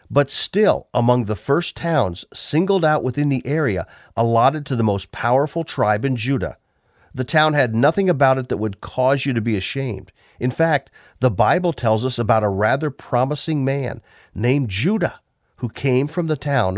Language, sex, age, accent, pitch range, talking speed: English, male, 50-69, American, 105-140 Hz, 180 wpm